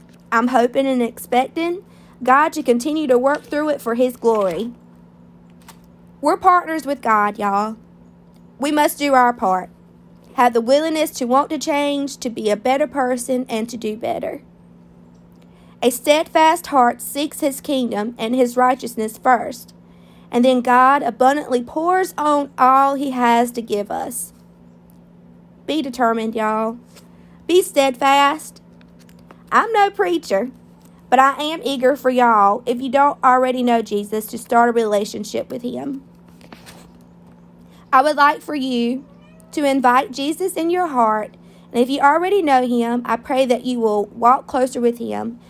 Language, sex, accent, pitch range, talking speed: English, female, American, 215-280 Hz, 150 wpm